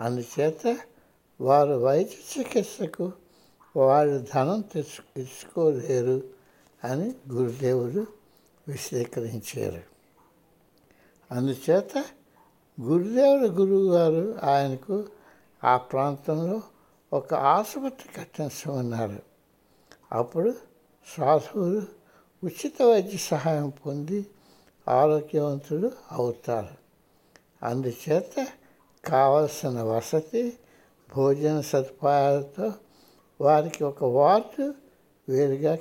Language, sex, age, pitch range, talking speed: Hindi, male, 60-79, 135-205 Hz, 50 wpm